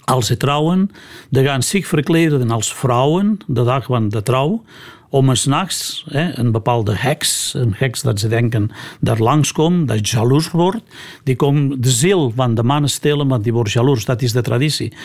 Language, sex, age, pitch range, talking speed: Dutch, male, 60-79, 120-150 Hz, 185 wpm